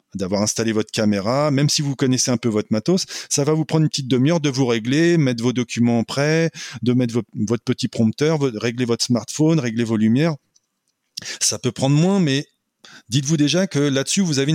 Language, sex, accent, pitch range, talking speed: French, male, French, 110-145 Hz, 200 wpm